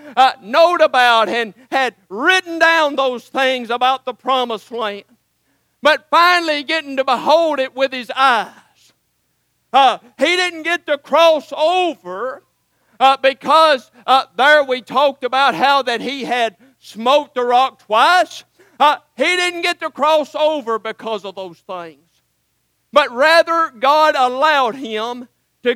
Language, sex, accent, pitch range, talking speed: English, male, American, 245-305 Hz, 140 wpm